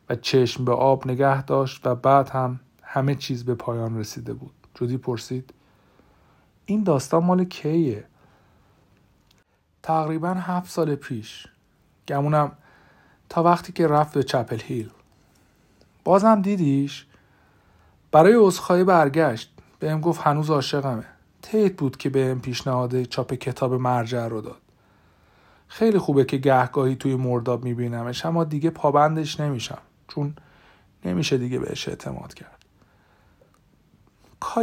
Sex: male